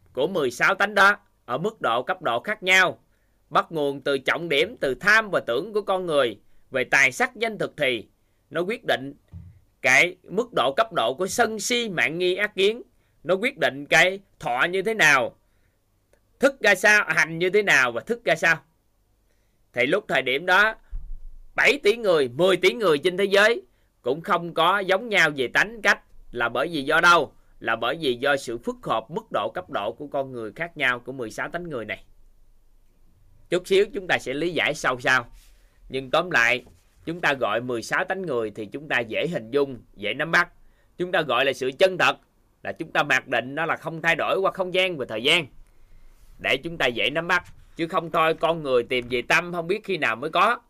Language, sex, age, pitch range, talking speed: Vietnamese, male, 20-39, 120-190 Hz, 215 wpm